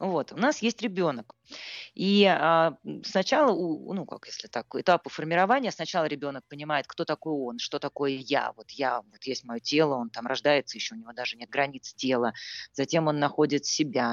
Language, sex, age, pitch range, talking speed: Russian, female, 20-39, 130-180 Hz, 185 wpm